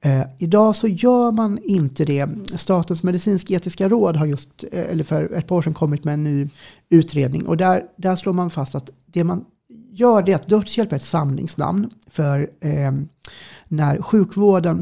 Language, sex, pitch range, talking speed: English, male, 145-185 Hz, 175 wpm